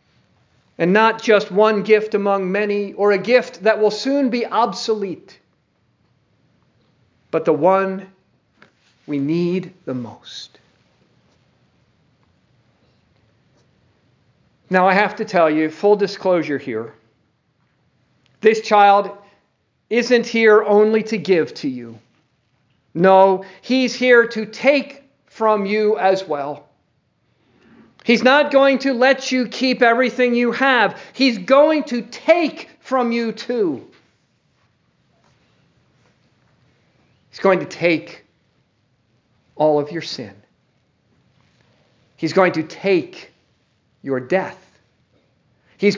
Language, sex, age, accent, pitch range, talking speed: English, male, 50-69, American, 165-235 Hz, 105 wpm